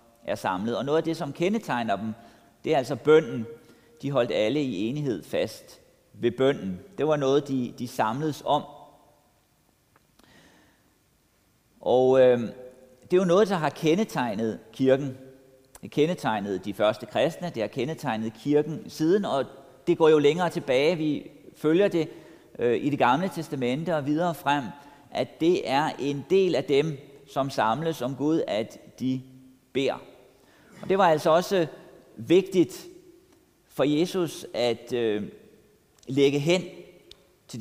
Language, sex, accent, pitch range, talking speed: Danish, male, native, 130-165 Hz, 145 wpm